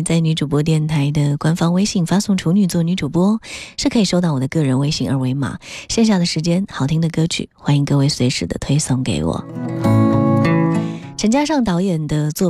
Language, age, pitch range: Chinese, 20-39, 145-205 Hz